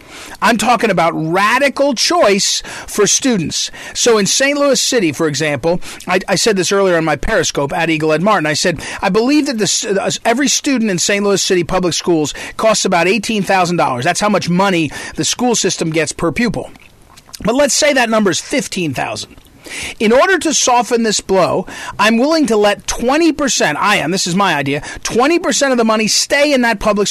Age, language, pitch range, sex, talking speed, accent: 40-59, English, 180-250 Hz, male, 195 wpm, American